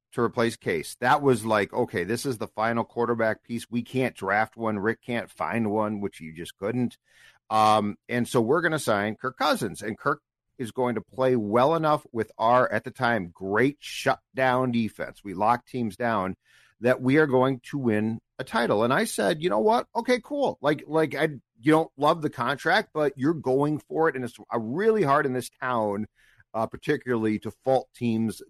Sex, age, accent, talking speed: male, 50-69, American, 200 wpm